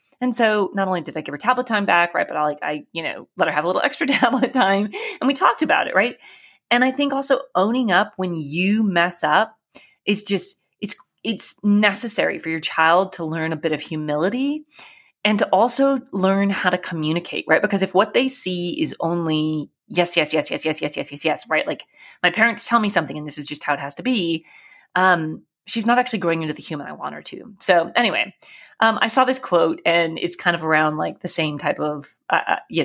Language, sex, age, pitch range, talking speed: English, female, 30-49, 155-225 Hz, 230 wpm